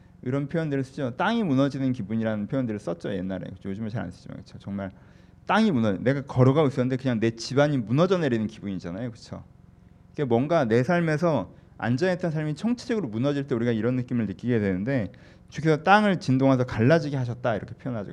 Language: Korean